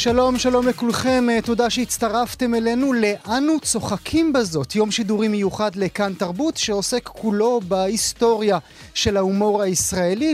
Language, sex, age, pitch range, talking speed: Hebrew, male, 30-49, 185-235 Hz, 120 wpm